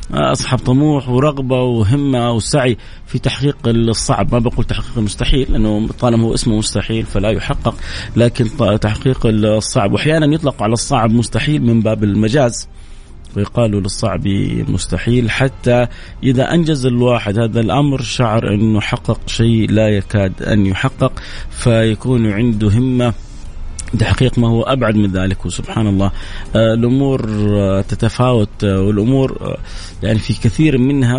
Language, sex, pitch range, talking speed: Arabic, male, 100-125 Hz, 135 wpm